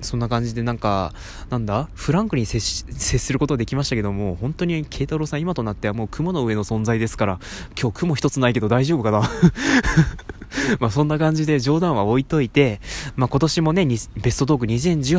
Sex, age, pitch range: male, 20-39, 120-180 Hz